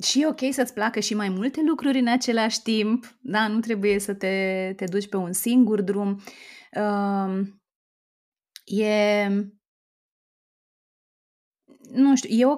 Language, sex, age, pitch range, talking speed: Romanian, female, 20-39, 195-245 Hz, 140 wpm